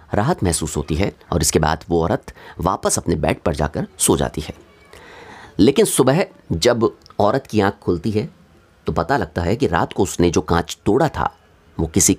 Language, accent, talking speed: Hindi, native, 190 wpm